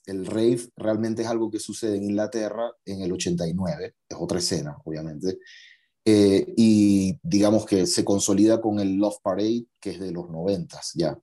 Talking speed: 170 wpm